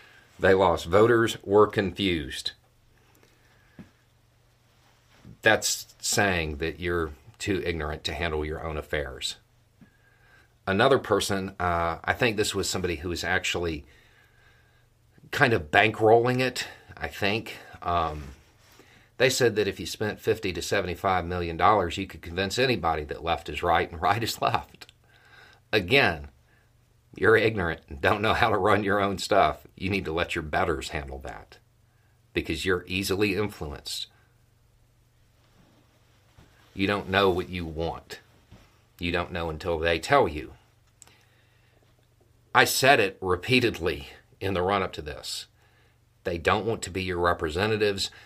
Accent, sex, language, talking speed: American, male, English, 135 wpm